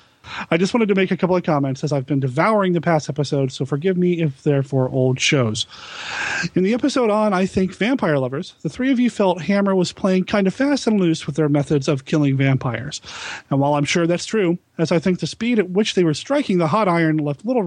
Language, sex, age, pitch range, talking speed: English, male, 30-49, 140-185 Hz, 245 wpm